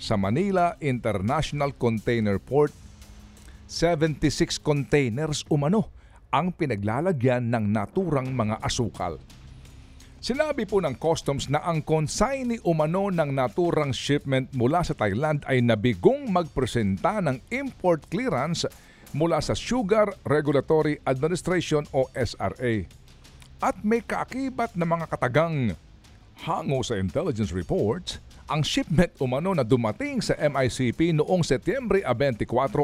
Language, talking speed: Filipino, 110 wpm